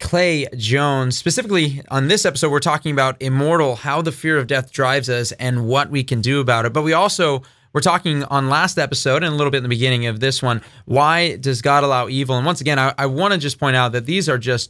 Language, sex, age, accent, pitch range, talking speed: English, male, 30-49, American, 130-155 Hz, 250 wpm